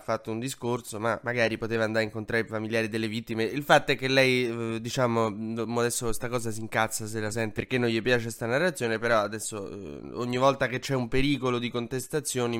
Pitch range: 115-145 Hz